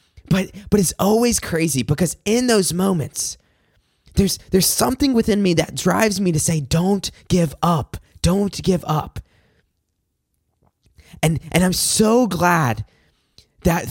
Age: 20-39